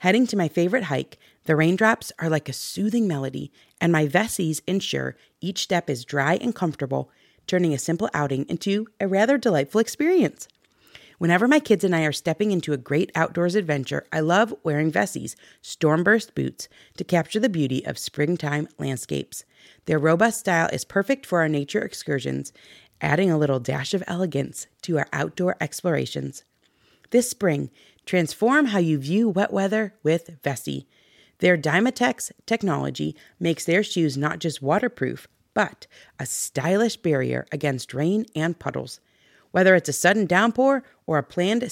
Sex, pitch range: female, 145-205 Hz